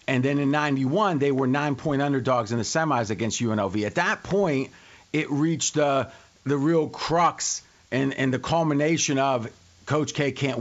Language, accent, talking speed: English, American, 170 wpm